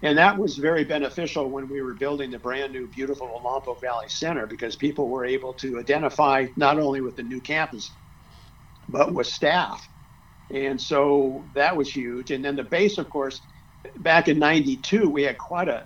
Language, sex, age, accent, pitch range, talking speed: English, male, 50-69, American, 125-150 Hz, 180 wpm